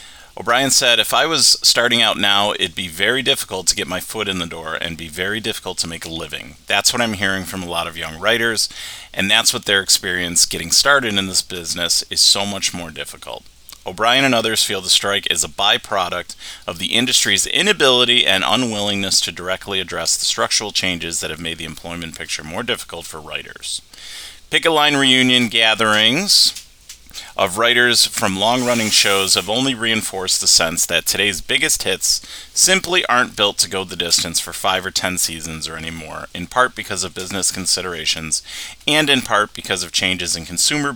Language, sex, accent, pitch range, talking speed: English, male, American, 85-115 Hz, 190 wpm